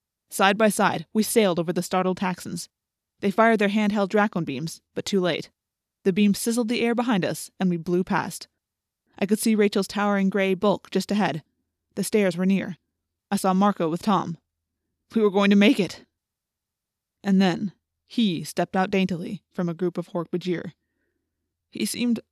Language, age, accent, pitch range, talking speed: English, 20-39, American, 175-205 Hz, 175 wpm